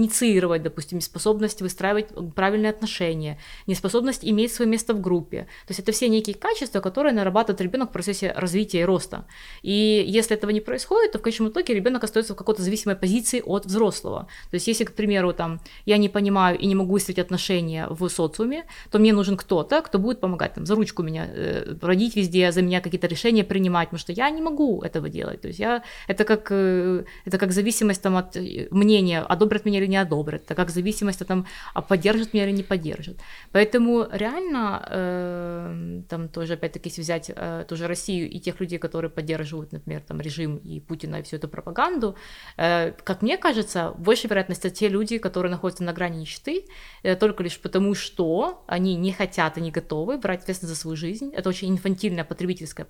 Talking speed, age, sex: 190 wpm, 20-39, female